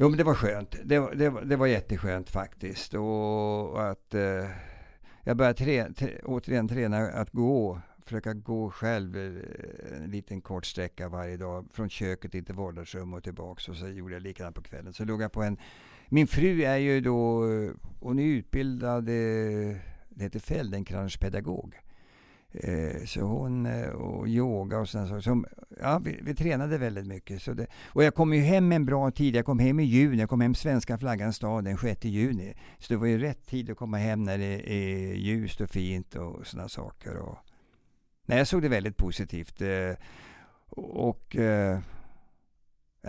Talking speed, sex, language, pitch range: 175 wpm, male, English, 95-125 Hz